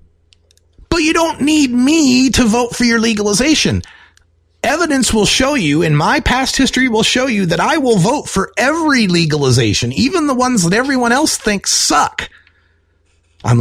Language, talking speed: English, 165 wpm